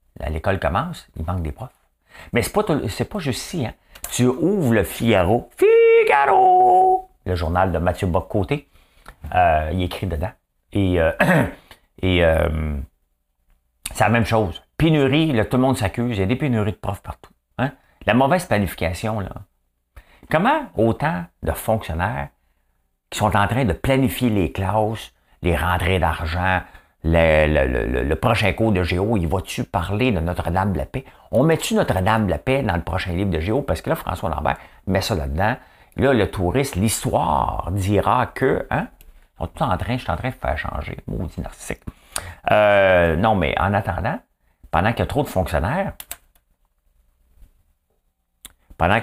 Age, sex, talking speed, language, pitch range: 50-69, male, 170 wpm, English, 80-110 Hz